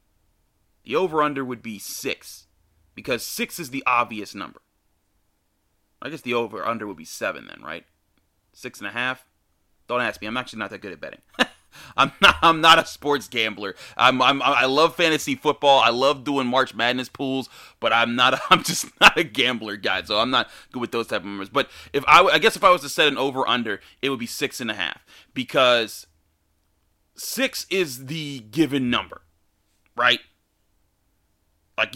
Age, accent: 30-49, American